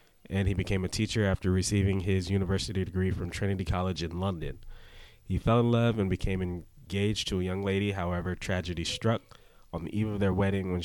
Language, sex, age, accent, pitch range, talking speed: English, male, 20-39, American, 85-100 Hz, 200 wpm